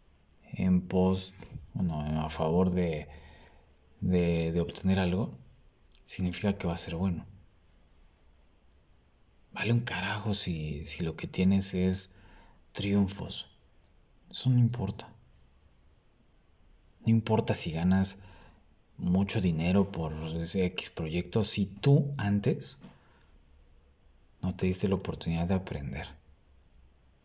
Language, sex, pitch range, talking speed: Spanish, male, 80-100 Hz, 110 wpm